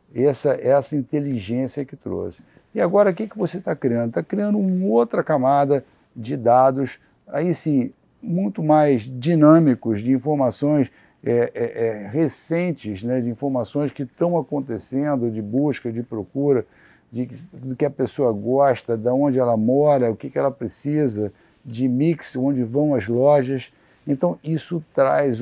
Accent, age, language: Brazilian, 50-69, Portuguese